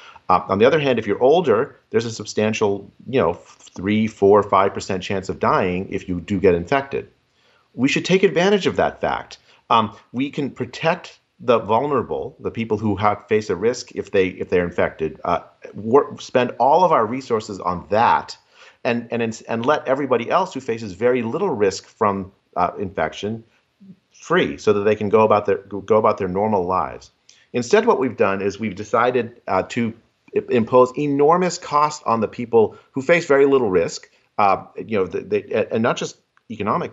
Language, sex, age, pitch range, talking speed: English, male, 40-59, 100-150 Hz, 190 wpm